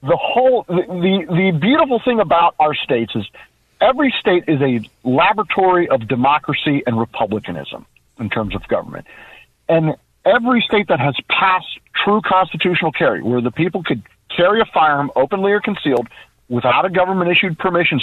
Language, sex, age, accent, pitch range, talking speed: English, male, 50-69, American, 130-205 Hz, 155 wpm